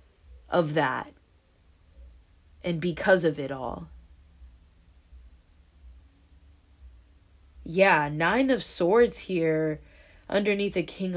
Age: 20-39